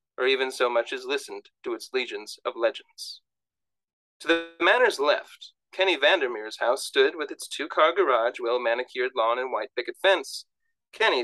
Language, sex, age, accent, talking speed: English, male, 30-49, American, 160 wpm